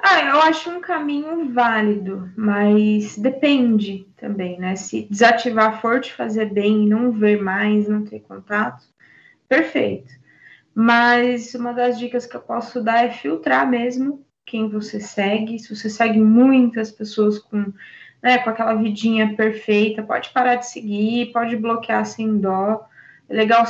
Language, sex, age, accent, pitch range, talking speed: Portuguese, female, 20-39, Brazilian, 210-245 Hz, 150 wpm